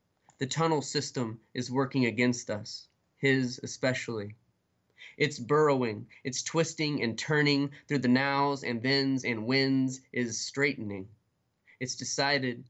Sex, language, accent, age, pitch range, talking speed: male, English, American, 20-39, 120-140 Hz, 125 wpm